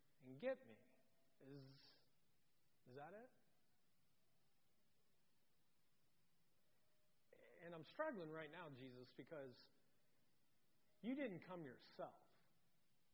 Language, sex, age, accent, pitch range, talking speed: English, male, 40-59, American, 155-210 Hz, 80 wpm